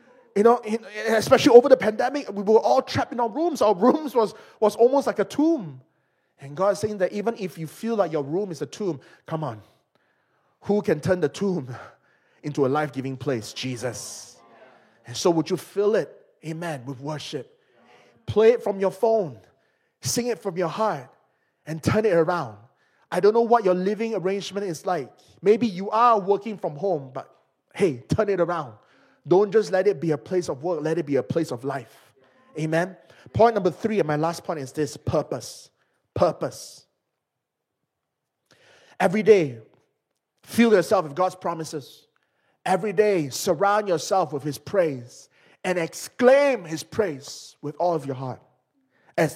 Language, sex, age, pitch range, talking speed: English, male, 20-39, 150-215 Hz, 175 wpm